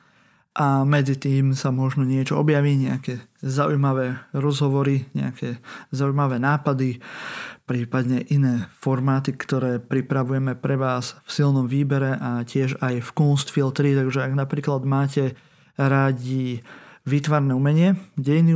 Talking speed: 115 wpm